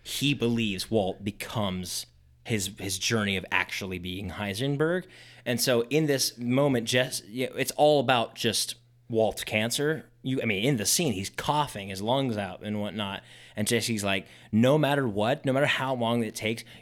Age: 20-39